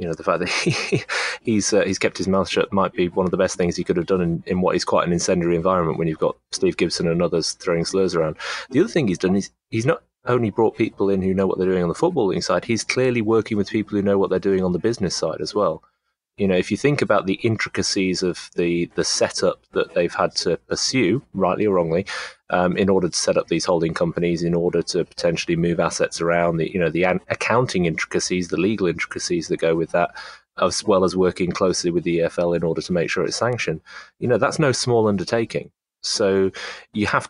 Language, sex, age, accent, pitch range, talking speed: English, male, 30-49, British, 85-100 Hz, 245 wpm